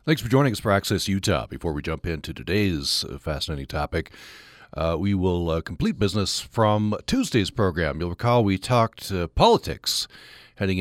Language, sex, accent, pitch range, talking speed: English, male, American, 90-120 Hz, 165 wpm